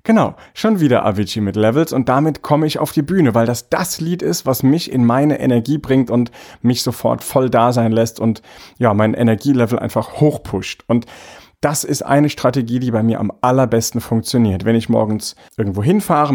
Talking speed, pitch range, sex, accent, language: 195 wpm, 115-140 Hz, male, German, German